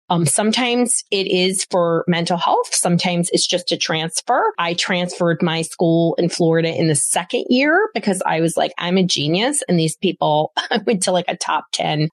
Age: 30-49